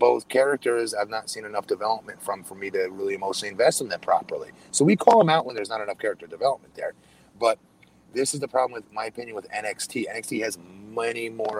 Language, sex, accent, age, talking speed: English, male, American, 30-49, 220 wpm